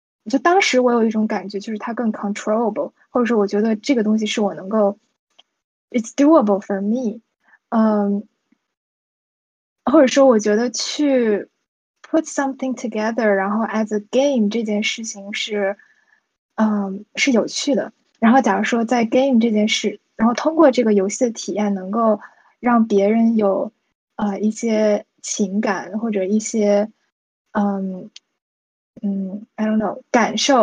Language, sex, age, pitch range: Chinese, female, 20-39, 210-250 Hz